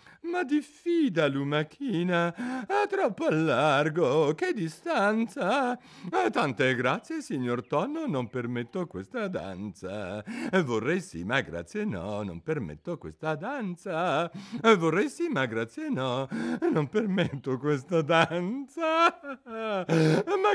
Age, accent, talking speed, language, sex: 60-79, native, 100 wpm, Italian, male